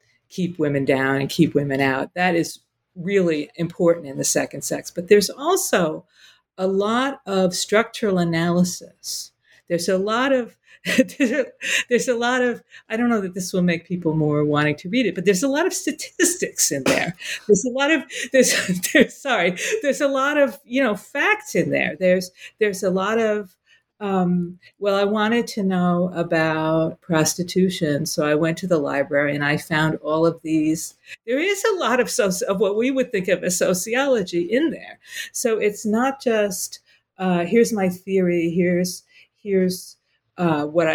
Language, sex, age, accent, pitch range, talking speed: English, female, 50-69, American, 170-240 Hz, 180 wpm